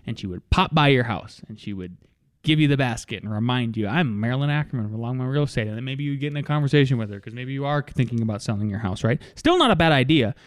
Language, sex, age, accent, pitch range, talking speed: English, male, 20-39, American, 125-165 Hz, 280 wpm